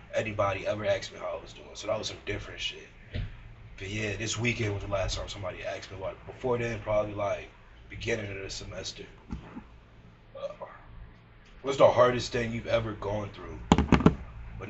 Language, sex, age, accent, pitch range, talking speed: English, male, 20-39, American, 100-115 Hz, 180 wpm